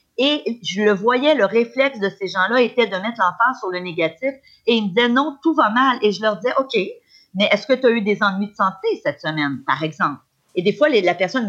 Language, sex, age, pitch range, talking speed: French, female, 40-59, 190-265 Hz, 250 wpm